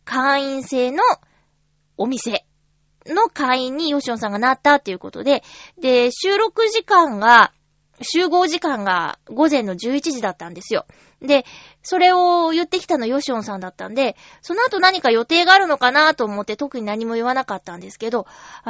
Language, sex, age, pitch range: Japanese, female, 20-39, 225-320 Hz